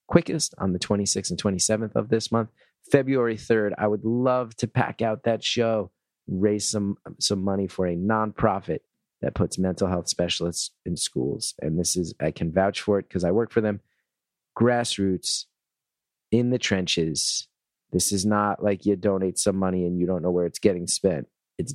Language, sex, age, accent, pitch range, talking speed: English, male, 30-49, American, 90-115 Hz, 185 wpm